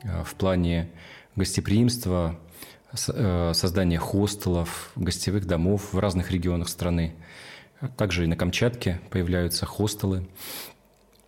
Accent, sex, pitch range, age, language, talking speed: native, male, 85-100 Hz, 30-49, Russian, 90 wpm